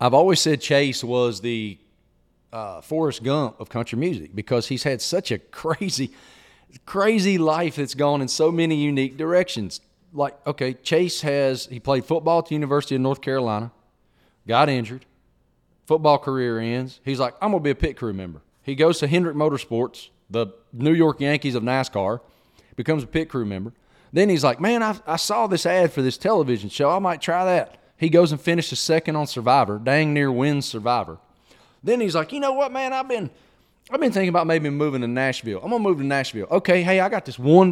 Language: English